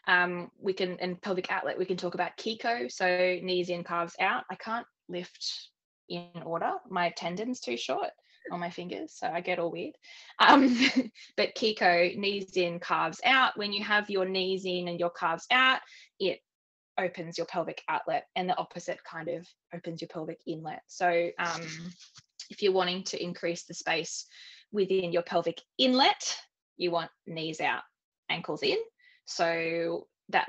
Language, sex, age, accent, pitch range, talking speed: English, female, 20-39, Australian, 165-200 Hz, 165 wpm